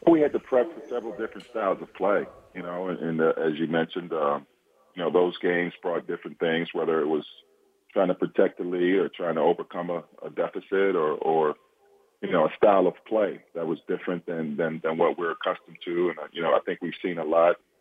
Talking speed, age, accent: 235 wpm, 40-59, American